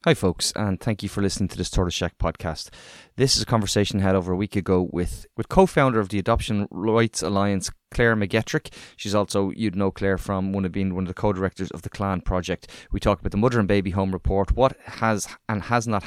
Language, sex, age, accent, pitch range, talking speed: English, male, 20-39, Irish, 95-115 Hz, 245 wpm